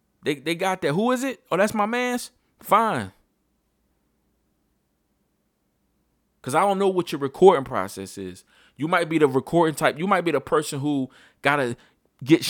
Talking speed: 175 wpm